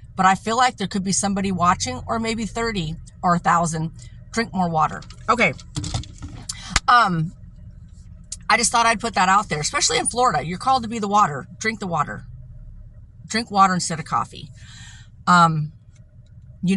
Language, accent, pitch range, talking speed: English, American, 155-230 Hz, 170 wpm